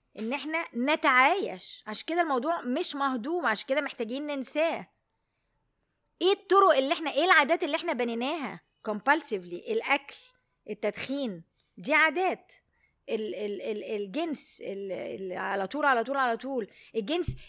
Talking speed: 125 wpm